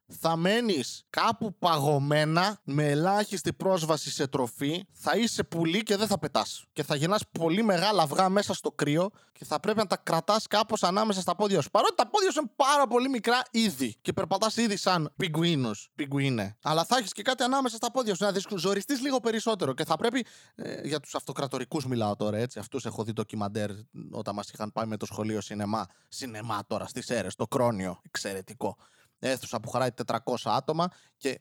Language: Greek